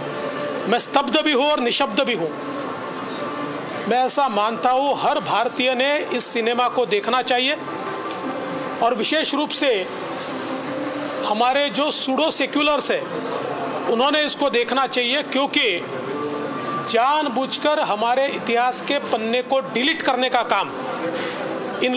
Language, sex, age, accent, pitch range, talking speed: Marathi, male, 40-59, native, 250-290 Hz, 130 wpm